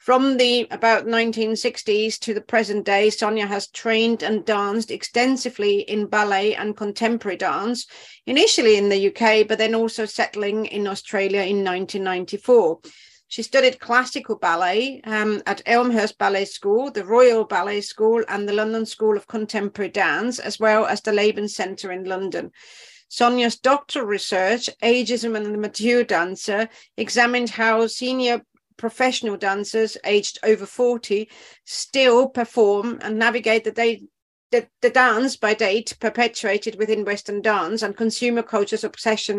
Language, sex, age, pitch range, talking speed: English, female, 40-59, 210-240 Hz, 145 wpm